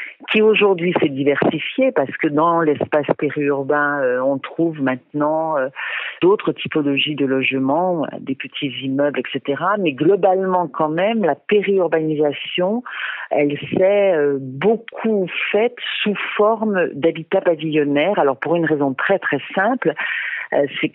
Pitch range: 145-195 Hz